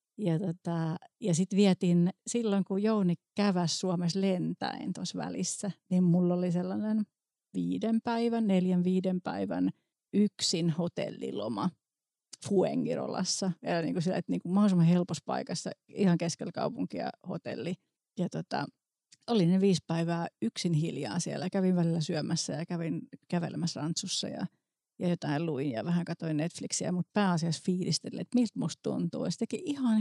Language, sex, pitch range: Finnish, female, 170-205 Hz